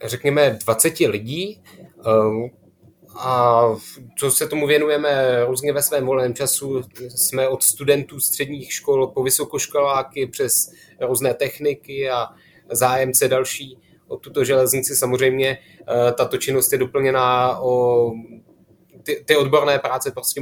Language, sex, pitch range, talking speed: Czech, male, 115-145 Hz, 120 wpm